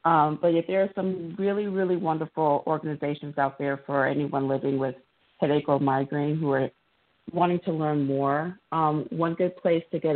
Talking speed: 185 wpm